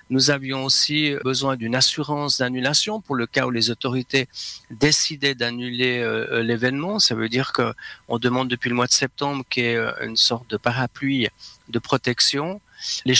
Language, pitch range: French, 120-140 Hz